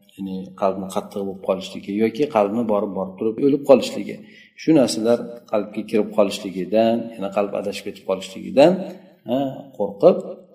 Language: Bulgarian